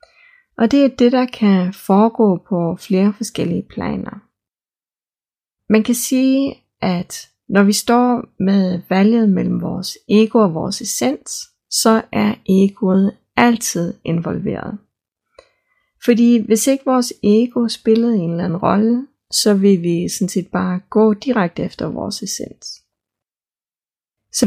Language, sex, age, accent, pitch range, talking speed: Danish, female, 30-49, native, 185-235 Hz, 130 wpm